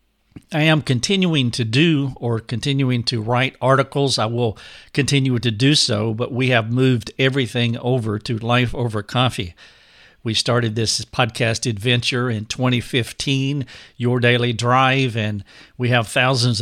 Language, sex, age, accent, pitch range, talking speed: English, male, 50-69, American, 115-135 Hz, 145 wpm